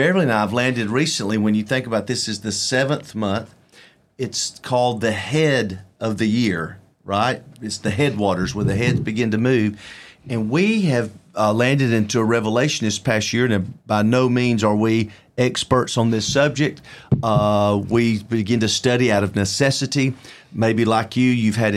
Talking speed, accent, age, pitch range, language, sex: 180 wpm, American, 40-59, 110-130 Hz, English, male